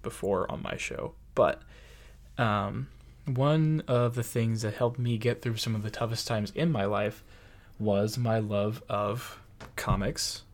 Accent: American